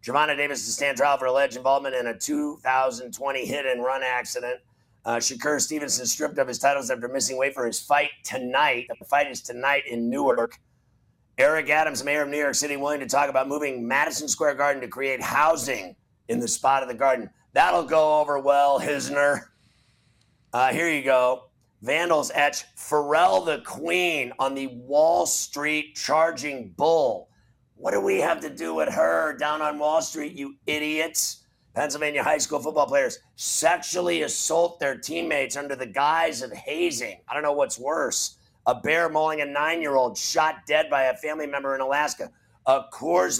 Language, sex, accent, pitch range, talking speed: English, male, American, 130-155 Hz, 175 wpm